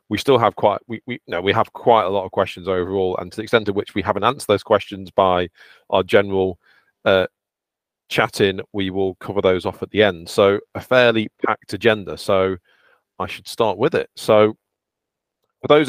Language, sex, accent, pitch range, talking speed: English, male, British, 95-110 Hz, 200 wpm